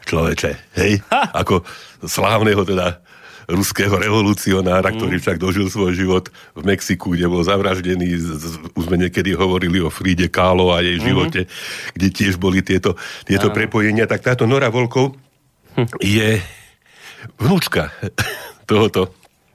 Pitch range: 85-100 Hz